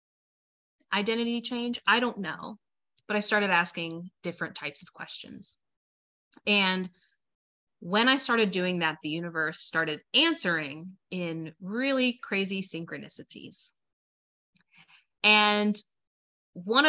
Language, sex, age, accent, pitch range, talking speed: English, female, 20-39, American, 165-215 Hz, 105 wpm